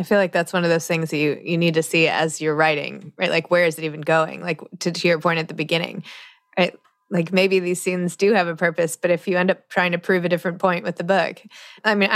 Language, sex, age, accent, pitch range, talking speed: English, female, 20-39, American, 165-195 Hz, 280 wpm